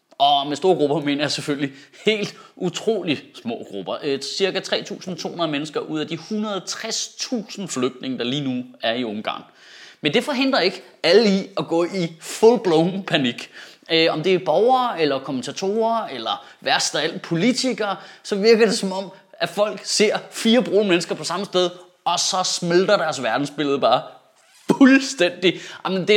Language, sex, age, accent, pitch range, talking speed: Danish, male, 30-49, native, 150-215 Hz, 165 wpm